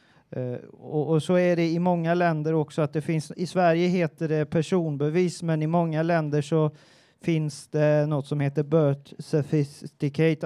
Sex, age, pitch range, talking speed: male, 30-49, 145-165 Hz, 170 wpm